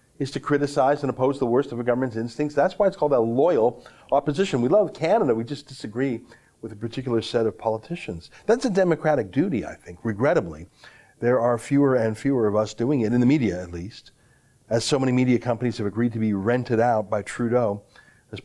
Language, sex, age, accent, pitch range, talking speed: English, male, 40-59, American, 110-145 Hz, 210 wpm